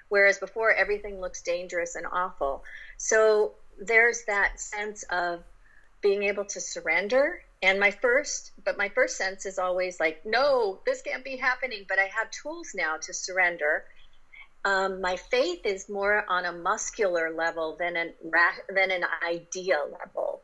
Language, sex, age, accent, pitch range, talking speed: English, female, 40-59, American, 175-215 Hz, 155 wpm